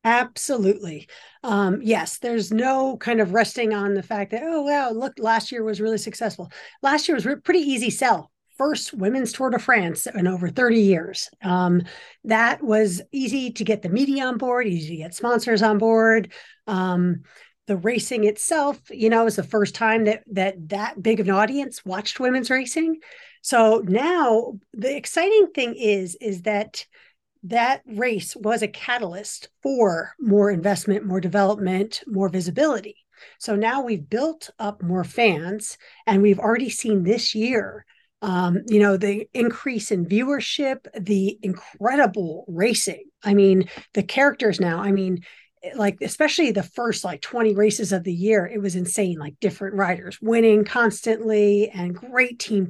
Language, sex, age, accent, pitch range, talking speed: English, female, 40-59, American, 195-245 Hz, 160 wpm